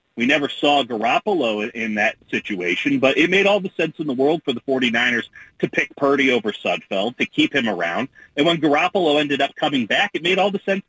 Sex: male